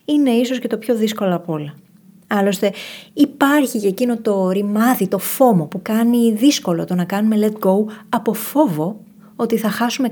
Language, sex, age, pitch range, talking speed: Greek, female, 20-39, 180-225 Hz, 170 wpm